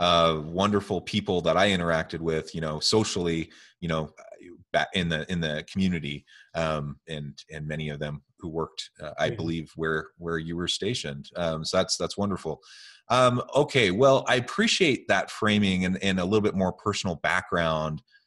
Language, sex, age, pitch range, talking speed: English, male, 30-49, 80-100 Hz, 175 wpm